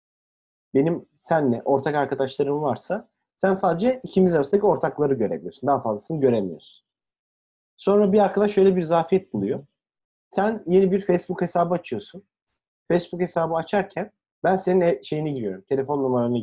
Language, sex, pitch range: Turkish, male, 130-185 Hz